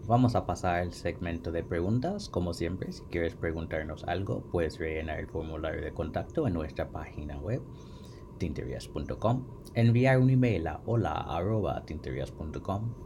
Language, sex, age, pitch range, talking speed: Spanish, male, 30-49, 85-115 Hz, 135 wpm